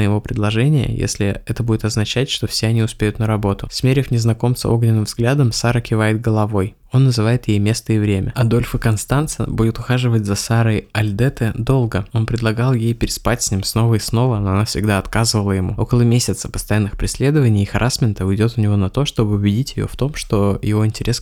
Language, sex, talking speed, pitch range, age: Russian, male, 190 wpm, 105-120 Hz, 20-39